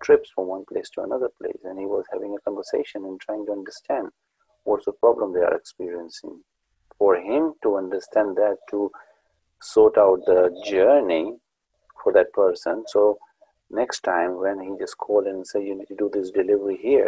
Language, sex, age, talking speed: English, male, 50-69, 185 wpm